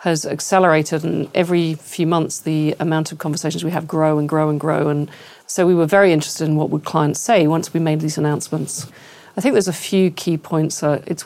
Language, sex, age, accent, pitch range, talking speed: English, female, 40-59, British, 155-175 Hz, 230 wpm